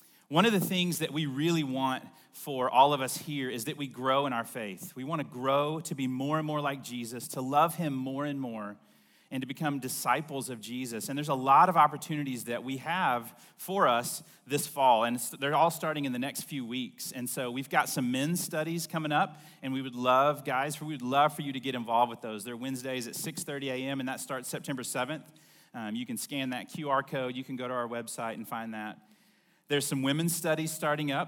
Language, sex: English, male